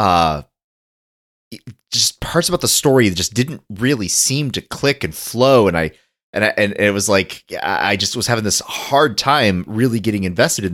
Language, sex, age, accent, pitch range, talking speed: English, male, 30-49, American, 95-130 Hz, 190 wpm